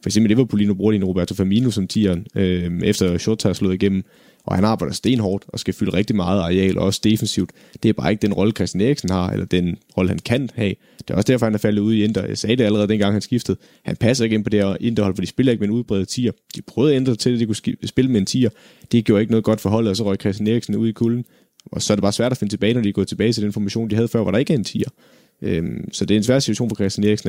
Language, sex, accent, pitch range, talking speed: Danish, male, native, 95-110 Hz, 295 wpm